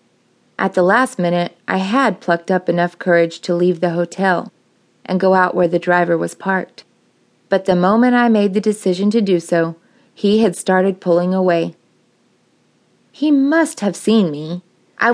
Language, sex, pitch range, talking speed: English, female, 175-215 Hz, 170 wpm